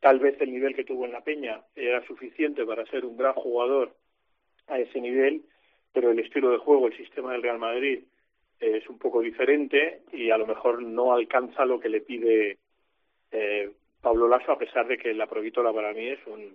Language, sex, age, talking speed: Spanish, male, 40-59, 205 wpm